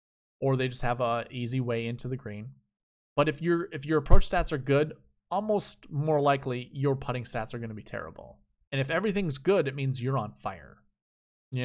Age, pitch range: 20-39, 110-135 Hz